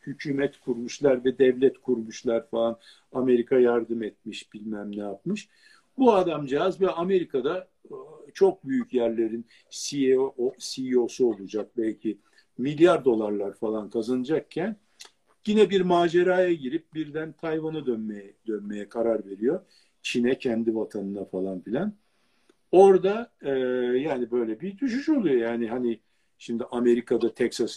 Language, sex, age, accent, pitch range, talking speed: Turkish, male, 50-69, native, 110-180 Hz, 115 wpm